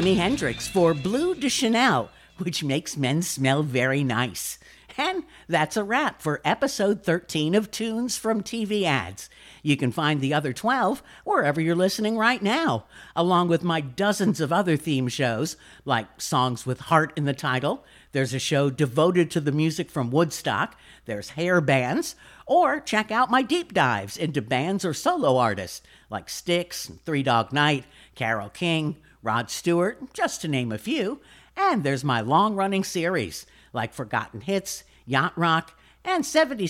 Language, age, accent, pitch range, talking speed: English, 50-69, American, 135-200 Hz, 160 wpm